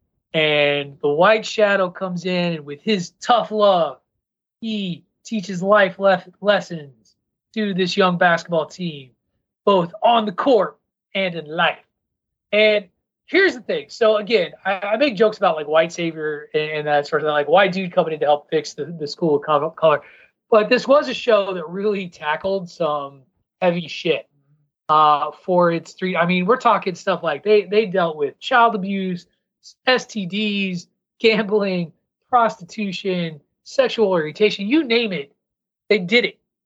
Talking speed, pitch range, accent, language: 165 wpm, 165-220 Hz, American, English